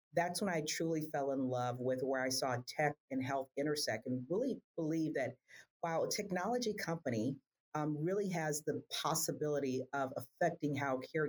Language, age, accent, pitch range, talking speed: English, 40-59, American, 130-160 Hz, 170 wpm